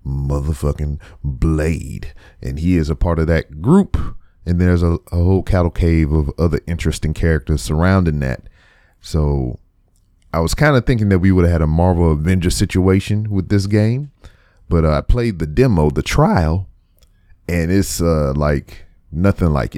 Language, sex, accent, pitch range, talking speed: English, male, American, 75-95 Hz, 165 wpm